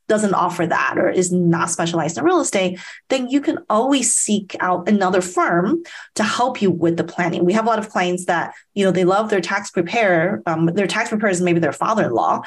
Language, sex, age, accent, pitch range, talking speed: English, female, 30-49, American, 170-215 Hz, 220 wpm